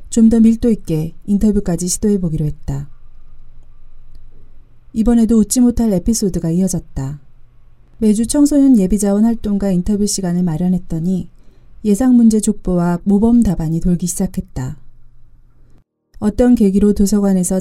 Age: 30-49